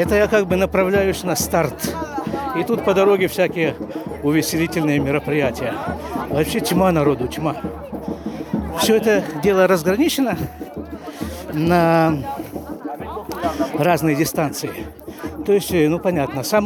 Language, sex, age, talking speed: Russian, male, 60-79, 110 wpm